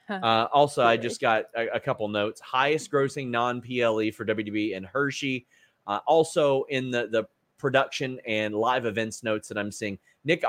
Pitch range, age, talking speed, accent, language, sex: 105-130 Hz, 30-49, 170 wpm, American, English, male